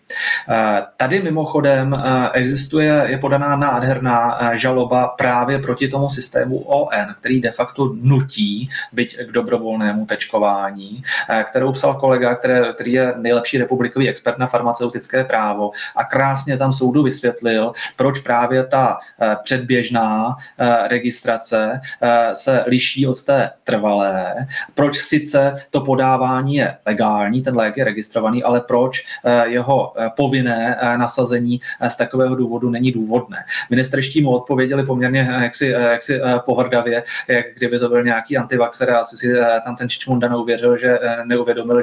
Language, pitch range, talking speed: Czech, 120-130 Hz, 125 wpm